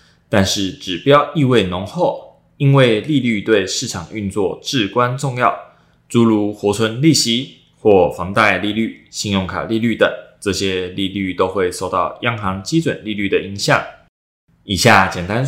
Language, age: Chinese, 20-39